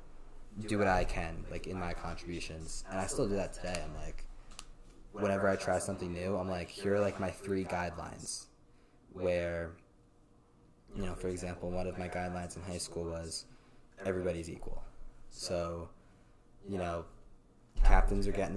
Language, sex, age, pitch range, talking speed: English, male, 20-39, 85-100 Hz, 160 wpm